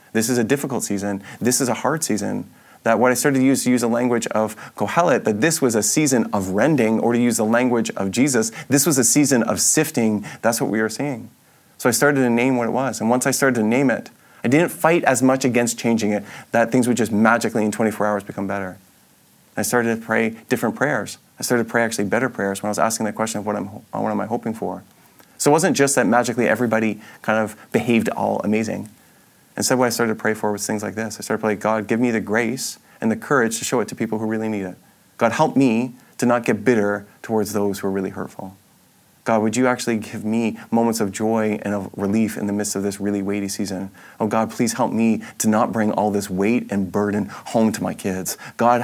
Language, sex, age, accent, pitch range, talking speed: English, male, 30-49, American, 105-120 Hz, 250 wpm